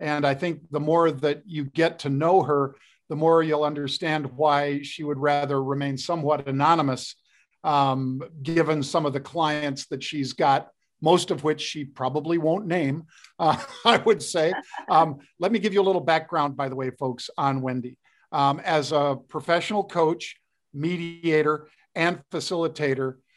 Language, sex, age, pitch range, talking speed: English, male, 50-69, 145-170 Hz, 165 wpm